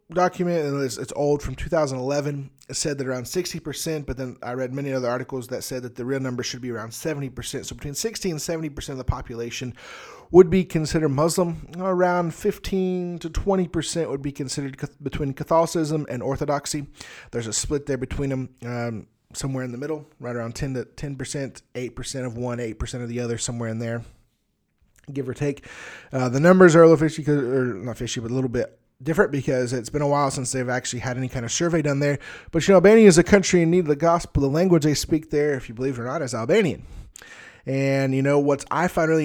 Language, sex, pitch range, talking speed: English, male, 130-165 Hz, 230 wpm